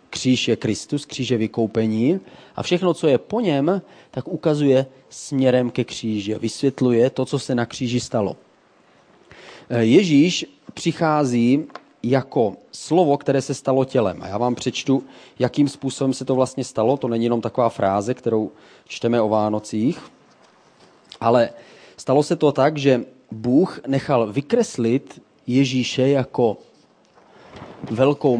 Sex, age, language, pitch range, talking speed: male, 30-49, Czech, 120-145 Hz, 135 wpm